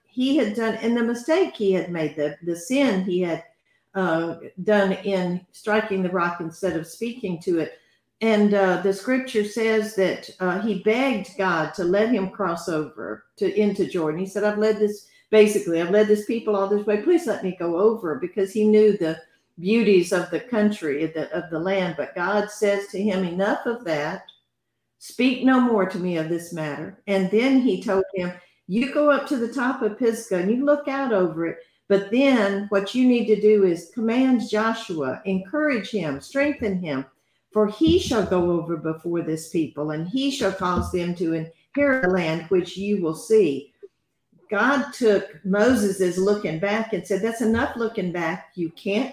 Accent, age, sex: American, 50-69, female